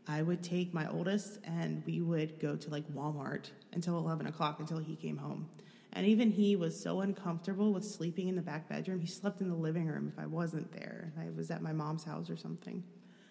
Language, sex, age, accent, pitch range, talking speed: English, female, 30-49, American, 155-200 Hz, 220 wpm